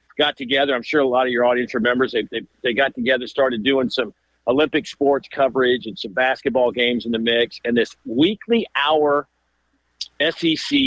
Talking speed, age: 180 wpm, 50-69